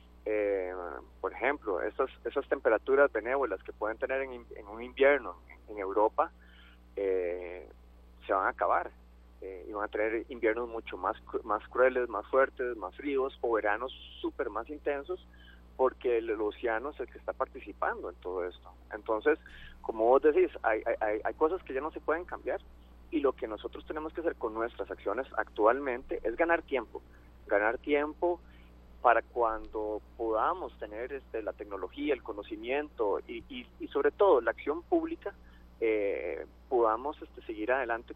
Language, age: Spanish, 30-49